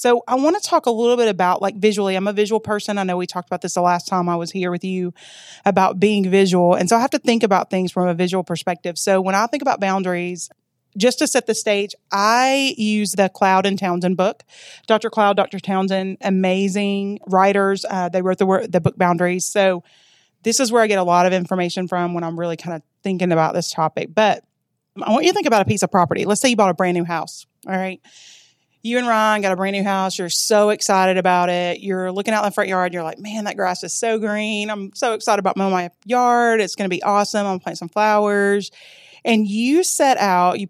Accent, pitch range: American, 185-220 Hz